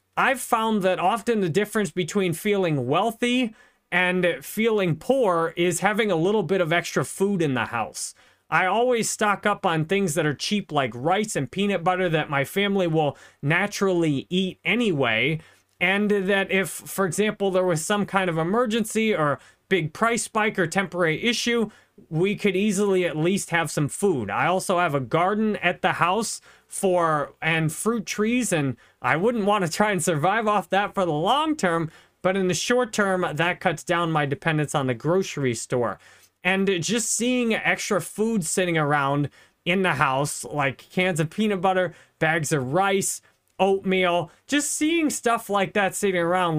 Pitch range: 165-205 Hz